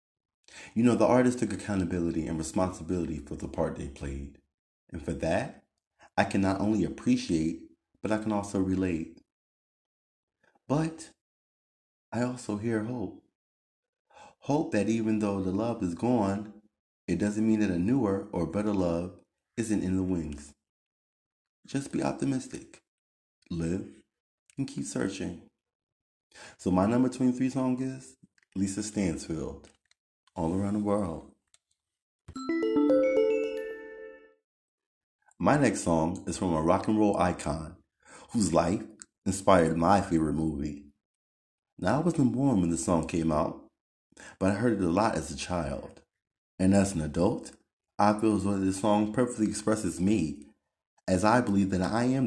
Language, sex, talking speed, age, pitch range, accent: English, male, 140 wpm, 30-49, 85-120 Hz, American